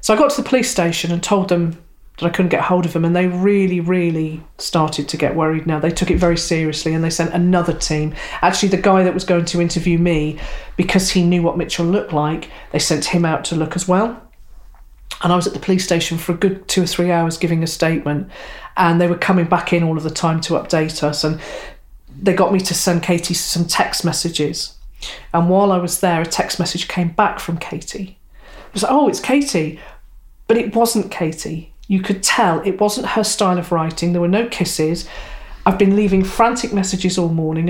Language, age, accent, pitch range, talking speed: English, 40-59, British, 165-190 Hz, 230 wpm